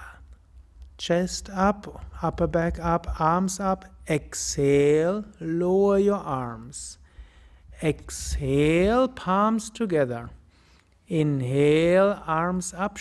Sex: male